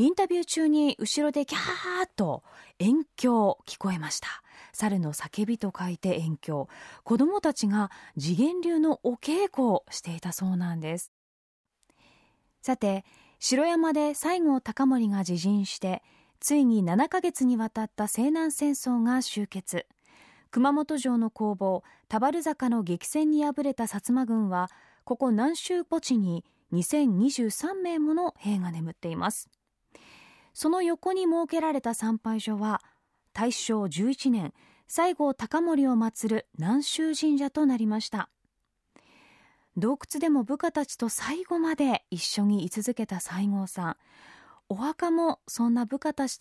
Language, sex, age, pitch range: Japanese, female, 20-39, 195-290 Hz